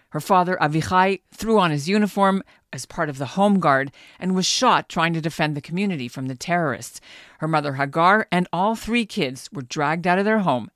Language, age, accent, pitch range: English, 50-69, American, 145-185 Hz